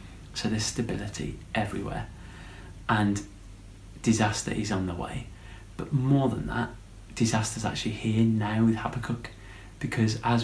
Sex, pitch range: male, 100-115 Hz